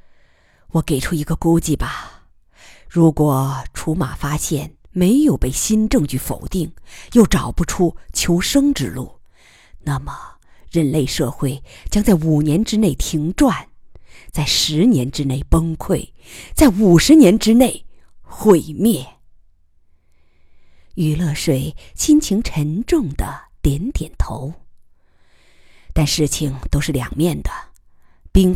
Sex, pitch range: female, 130-175 Hz